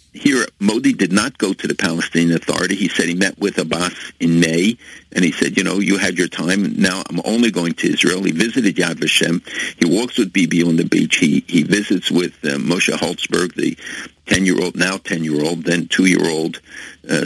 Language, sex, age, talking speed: English, male, 60-79, 220 wpm